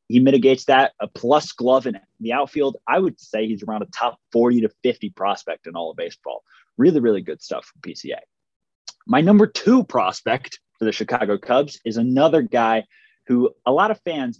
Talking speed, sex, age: 200 wpm, male, 20-39